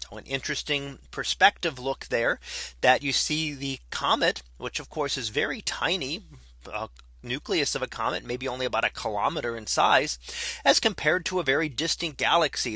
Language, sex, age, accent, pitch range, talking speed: English, male, 30-49, American, 125-170 Hz, 165 wpm